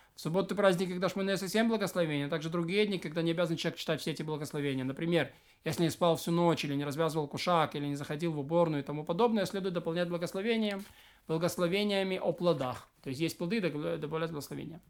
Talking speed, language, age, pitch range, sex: 195 wpm, Russian, 20-39, 165-200 Hz, male